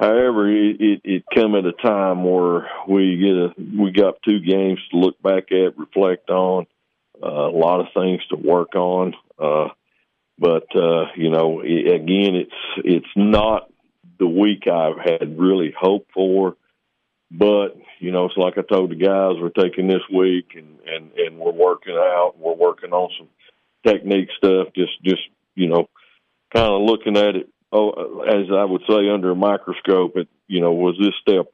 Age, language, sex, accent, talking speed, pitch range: 50-69, English, male, American, 180 wpm, 90-105 Hz